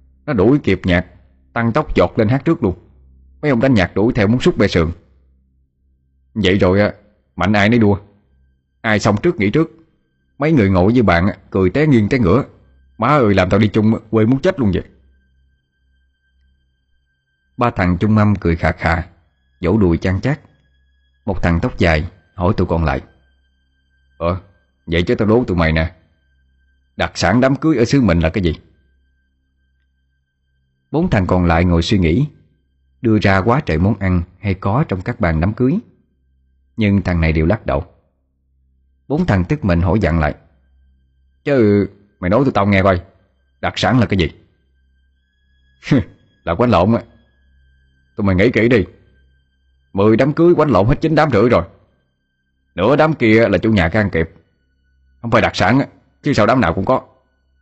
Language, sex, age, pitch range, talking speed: Vietnamese, male, 20-39, 65-105 Hz, 185 wpm